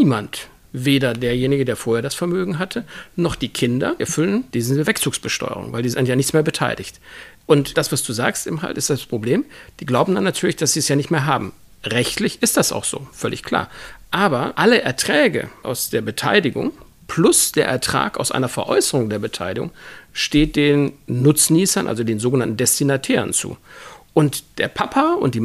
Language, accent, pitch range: German, German, 125-155 Hz